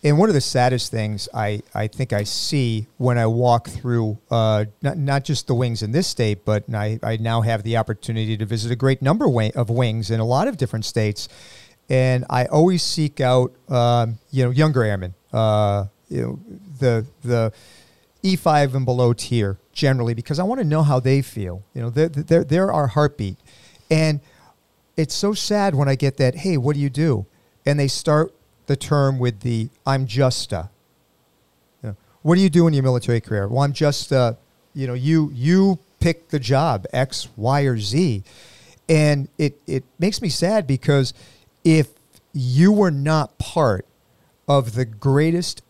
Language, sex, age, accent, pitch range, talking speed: English, male, 40-59, American, 115-145 Hz, 185 wpm